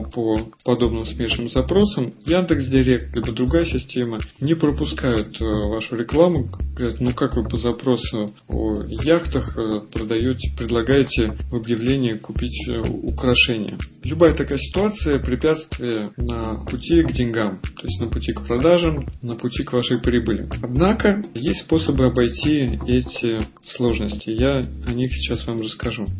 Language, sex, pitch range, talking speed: Russian, male, 110-135 Hz, 130 wpm